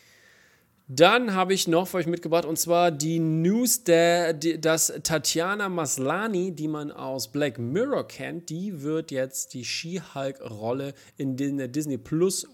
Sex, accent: male, German